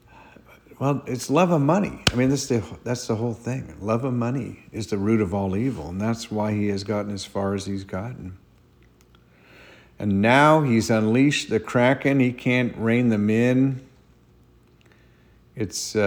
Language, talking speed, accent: English, 160 wpm, American